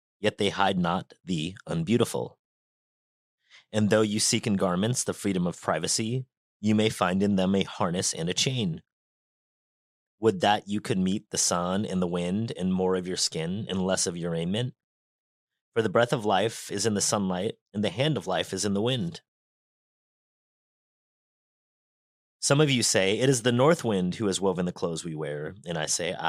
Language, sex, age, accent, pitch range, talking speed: English, male, 30-49, American, 95-115 Hz, 190 wpm